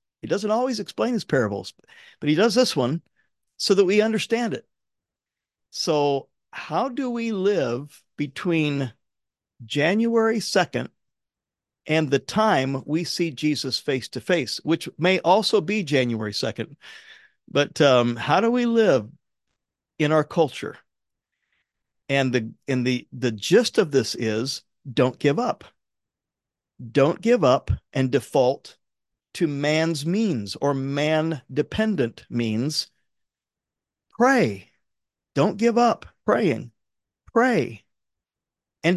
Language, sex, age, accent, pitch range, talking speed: English, male, 50-69, American, 130-185 Hz, 120 wpm